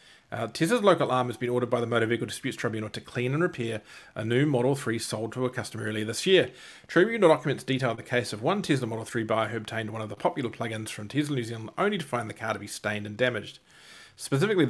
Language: English